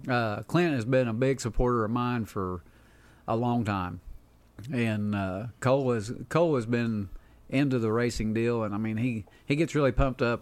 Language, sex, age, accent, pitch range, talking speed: English, male, 40-59, American, 105-125 Hz, 190 wpm